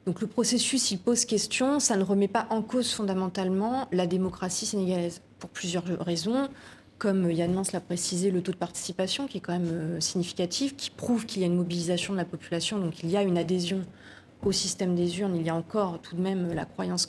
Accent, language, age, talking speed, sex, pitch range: French, French, 30-49, 220 wpm, female, 175-210 Hz